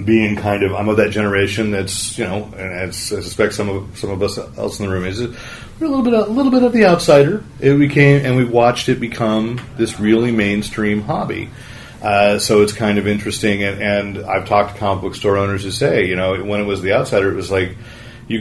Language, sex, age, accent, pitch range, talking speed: English, male, 30-49, American, 95-110 Hz, 240 wpm